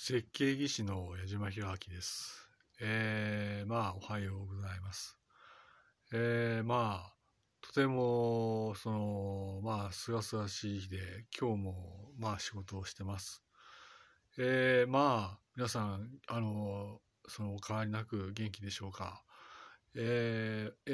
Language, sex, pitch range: Japanese, male, 100-125 Hz